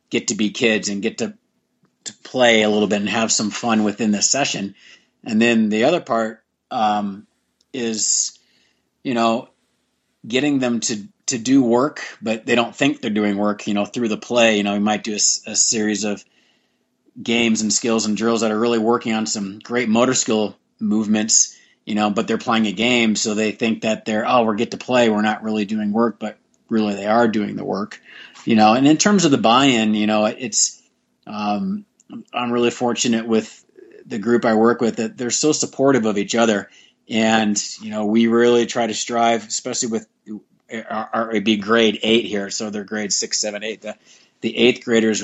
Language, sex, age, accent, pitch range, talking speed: English, male, 30-49, American, 105-120 Hz, 205 wpm